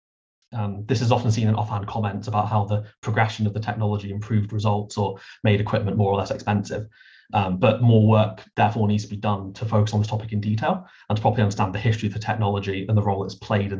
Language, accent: English, British